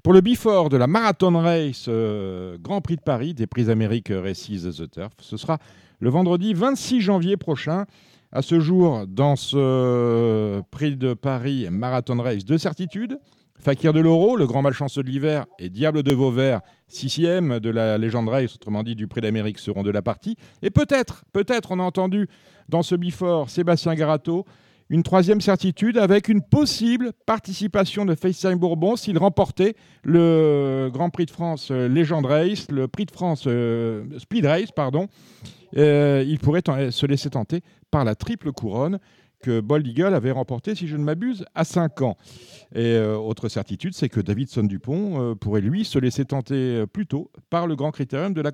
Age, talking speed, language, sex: 40-59, 180 wpm, French, male